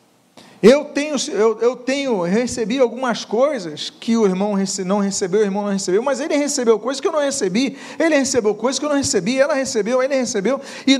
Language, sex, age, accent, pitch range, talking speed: Portuguese, male, 50-69, Brazilian, 225-275 Hz, 205 wpm